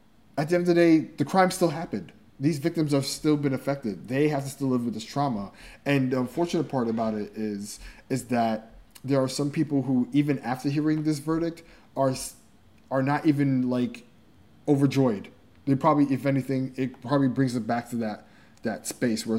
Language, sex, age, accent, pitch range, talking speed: English, male, 20-39, American, 115-140 Hz, 195 wpm